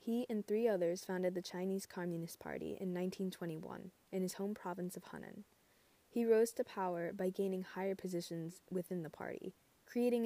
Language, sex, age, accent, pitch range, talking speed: English, female, 20-39, American, 170-210 Hz, 170 wpm